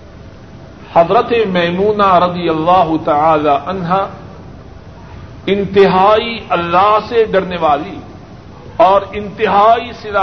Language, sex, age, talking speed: Urdu, male, 50-69, 80 wpm